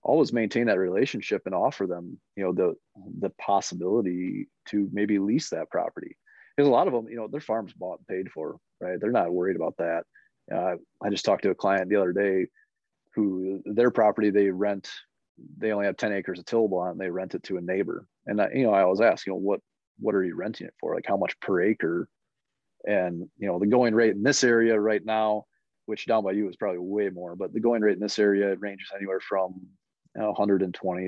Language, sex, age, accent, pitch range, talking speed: English, male, 30-49, American, 95-110 Hz, 230 wpm